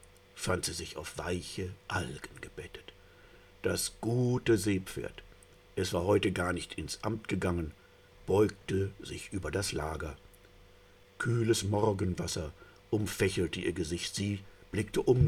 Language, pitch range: German, 85-100 Hz